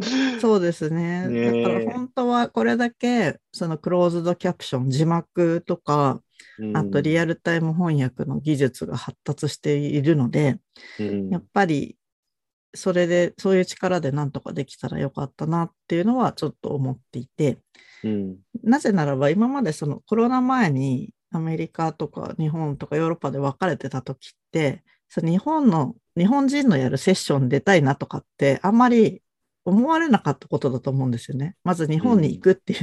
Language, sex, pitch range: Japanese, female, 140-205 Hz